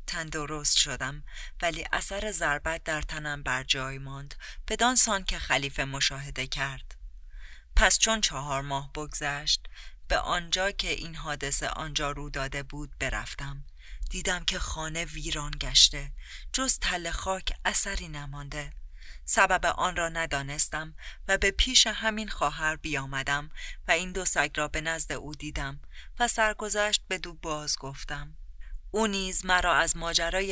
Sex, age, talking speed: female, 30-49, 140 wpm